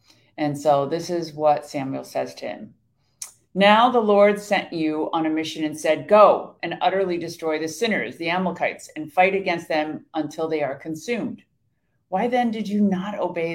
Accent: American